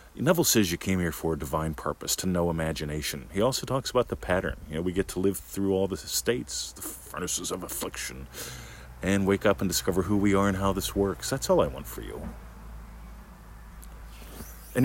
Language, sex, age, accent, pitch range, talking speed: English, male, 50-69, American, 80-100 Hz, 205 wpm